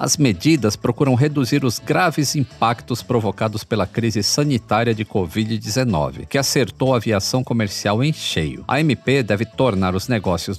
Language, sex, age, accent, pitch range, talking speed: Portuguese, male, 50-69, Brazilian, 105-140 Hz, 145 wpm